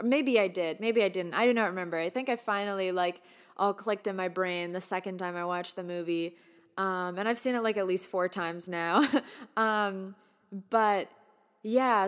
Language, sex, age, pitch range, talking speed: English, female, 20-39, 185-225 Hz, 205 wpm